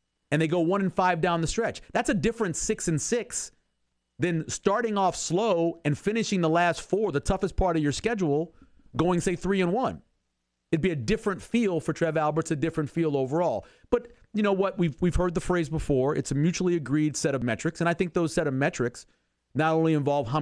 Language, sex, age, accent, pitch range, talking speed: English, male, 40-59, American, 125-175 Hz, 220 wpm